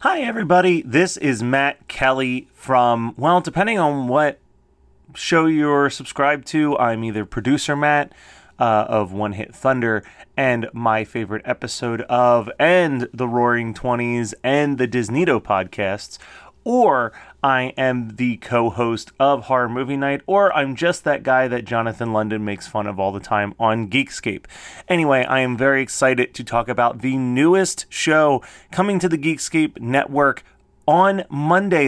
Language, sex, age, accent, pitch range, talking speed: English, male, 30-49, American, 120-150 Hz, 150 wpm